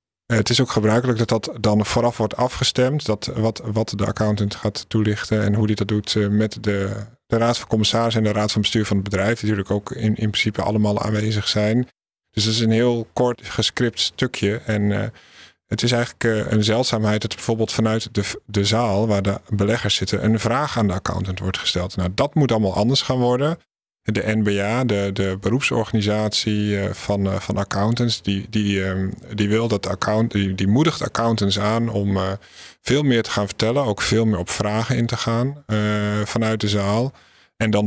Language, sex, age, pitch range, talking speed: Dutch, male, 50-69, 100-115 Hz, 195 wpm